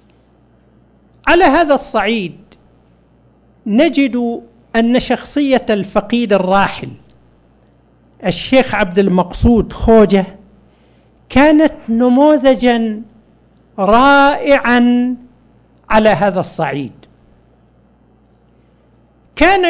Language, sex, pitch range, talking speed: Arabic, male, 200-275 Hz, 60 wpm